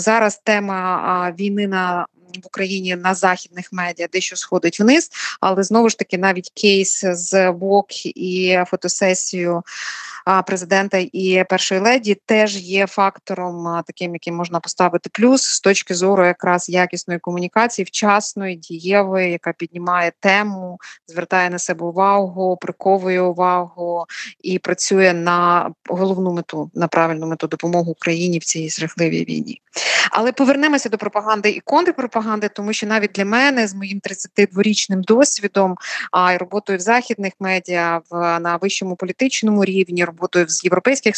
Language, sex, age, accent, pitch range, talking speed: Ukrainian, female, 20-39, native, 180-205 Hz, 135 wpm